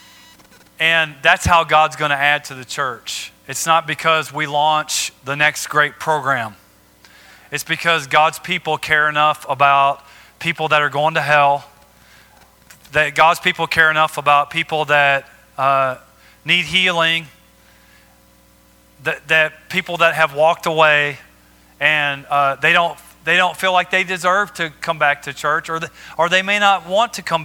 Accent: American